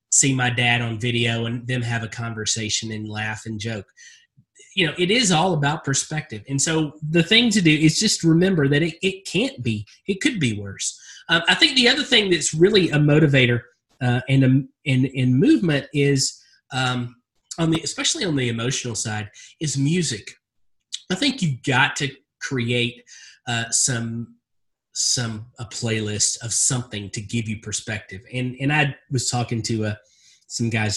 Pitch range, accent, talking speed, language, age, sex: 115-145 Hz, American, 180 wpm, English, 30-49, male